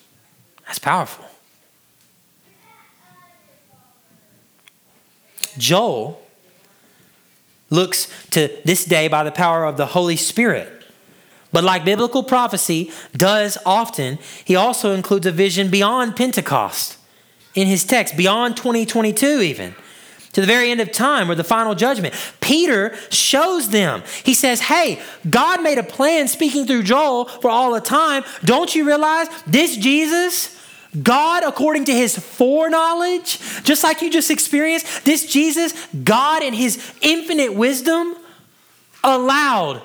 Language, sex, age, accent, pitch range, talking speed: English, male, 30-49, American, 195-290 Hz, 125 wpm